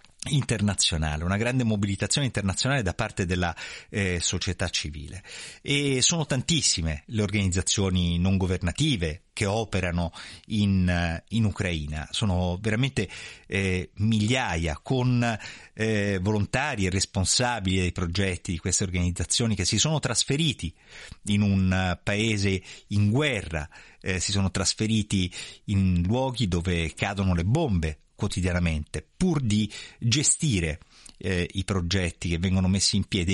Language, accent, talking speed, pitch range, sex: Italian, native, 120 wpm, 90-115 Hz, male